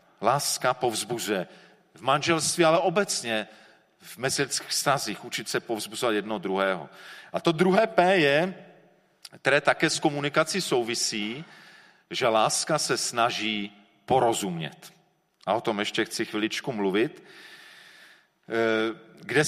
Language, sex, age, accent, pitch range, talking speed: Czech, male, 40-59, native, 120-170 Hz, 115 wpm